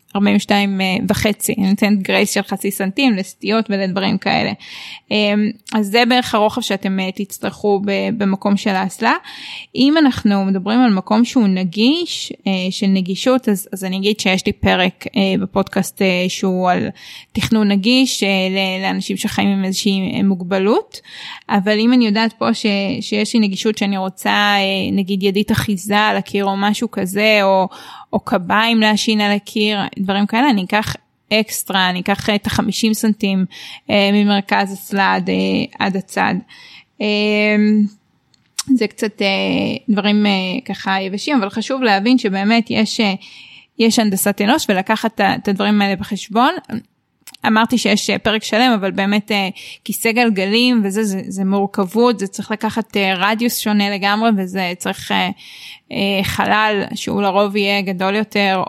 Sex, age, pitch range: female, 20-39, 195-220 Hz